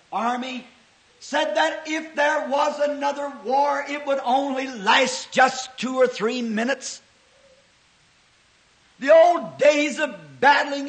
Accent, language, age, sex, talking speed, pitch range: American, English, 50-69, male, 120 wpm, 265-315 Hz